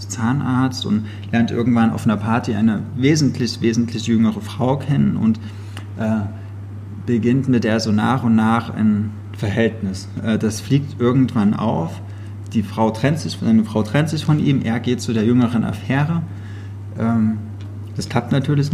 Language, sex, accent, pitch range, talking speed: German, male, German, 105-120 Hz, 155 wpm